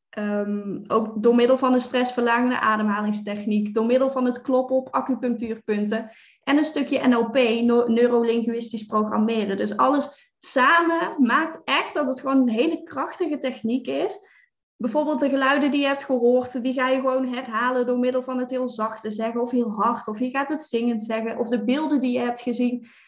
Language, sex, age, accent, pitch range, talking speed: Dutch, female, 10-29, Dutch, 225-275 Hz, 180 wpm